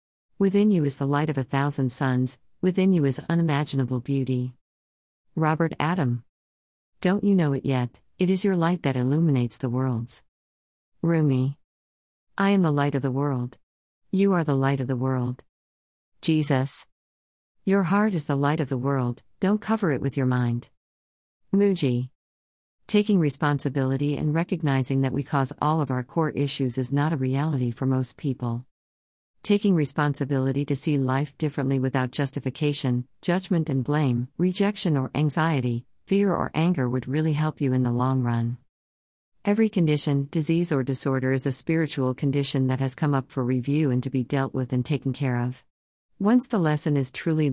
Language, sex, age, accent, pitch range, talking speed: English, female, 50-69, American, 125-155 Hz, 170 wpm